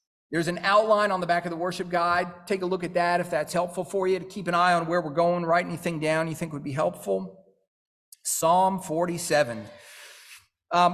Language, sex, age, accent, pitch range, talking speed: English, male, 40-59, American, 165-220 Hz, 215 wpm